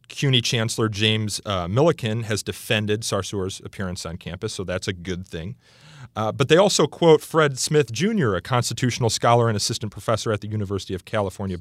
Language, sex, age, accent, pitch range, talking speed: English, male, 30-49, American, 95-125 Hz, 180 wpm